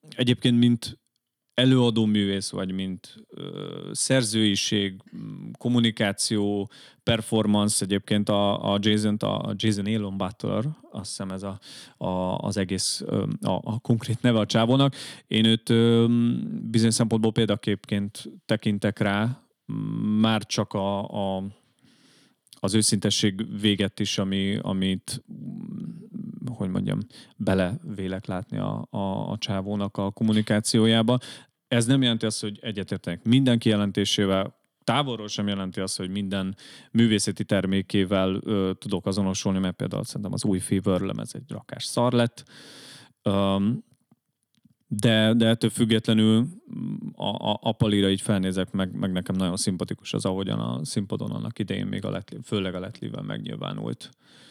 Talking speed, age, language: 130 wpm, 30-49, Hungarian